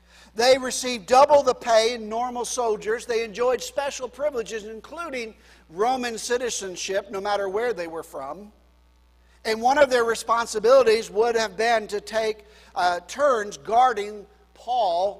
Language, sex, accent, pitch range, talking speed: English, male, American, 200-250 Hz, 140 wpm